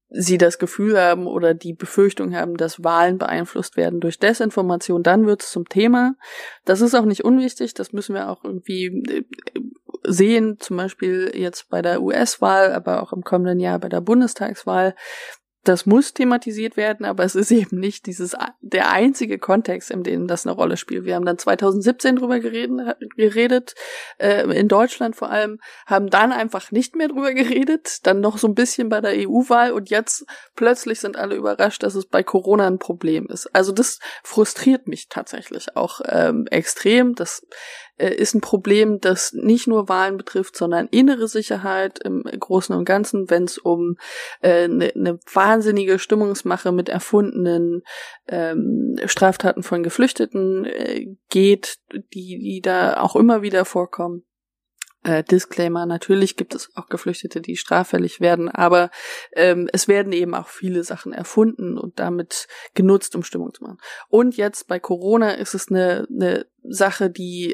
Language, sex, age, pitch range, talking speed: German, female, 20-39, 180-230 Hz, 165 wpm